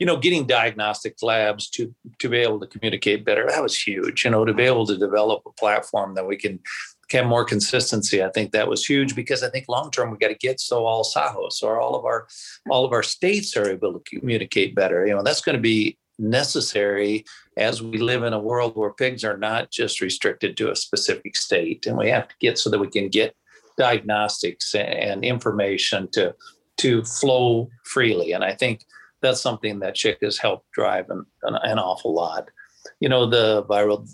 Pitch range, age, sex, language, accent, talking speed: 110-145 Hz, 50-69, male, English, American, 205 wpm